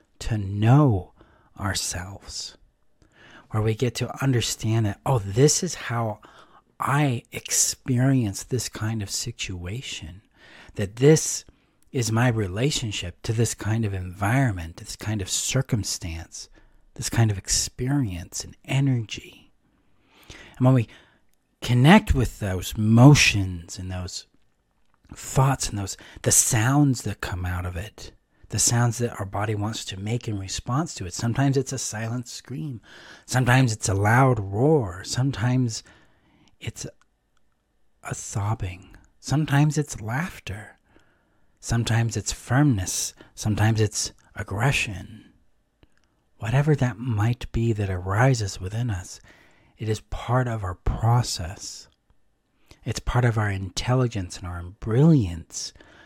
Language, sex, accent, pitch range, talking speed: English, male, American, 100-125 Hz, 125 wpm